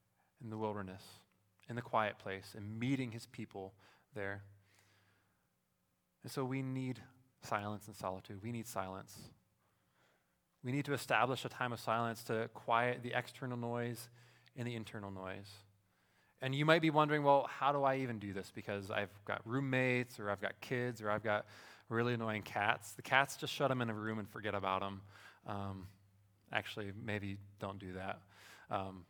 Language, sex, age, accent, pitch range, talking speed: English, male, 20-39, American, 100-125 Hz, 175 wpm